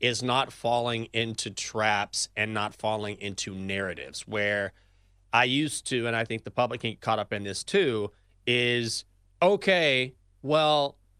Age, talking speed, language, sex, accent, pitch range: 30-49, 155 wpm, English, male, American, 105-140 Hz